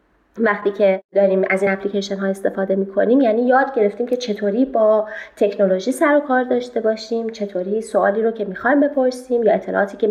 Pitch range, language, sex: 200-260 Hz, Persian, female